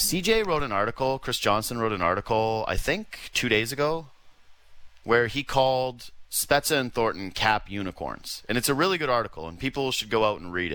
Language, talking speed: English, 195 wpm